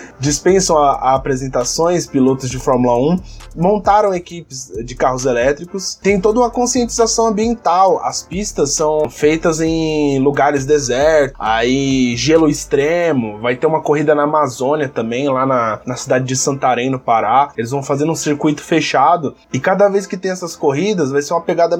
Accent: Brazilian